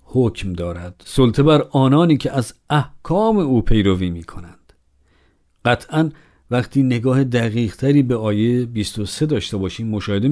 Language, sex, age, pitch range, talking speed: Persian, male, 50-69, 100-130 Hz, 130 wpm